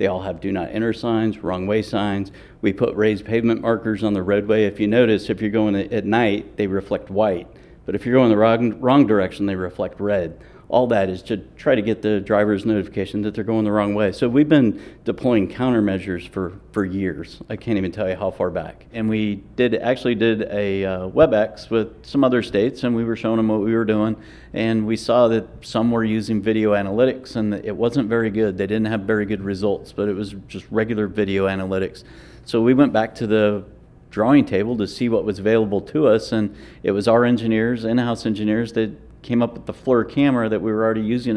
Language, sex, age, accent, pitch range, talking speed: English, male, 50-69, American, 100-115 Hz, 225 wpm